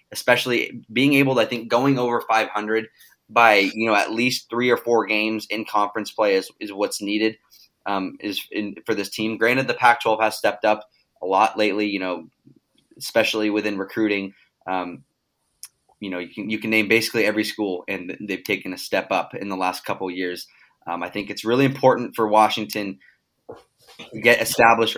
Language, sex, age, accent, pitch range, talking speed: English, male, 20-39, American, 105-115 Hz, 190 wpm